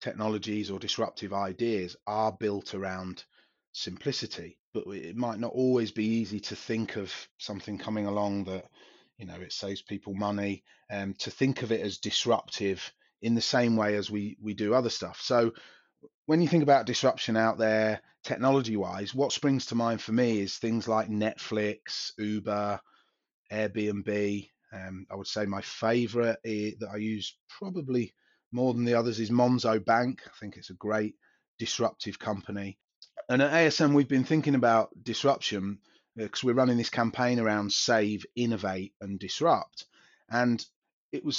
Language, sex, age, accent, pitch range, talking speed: English, male, 30-49, British, 105-130 Hz, 160 wpm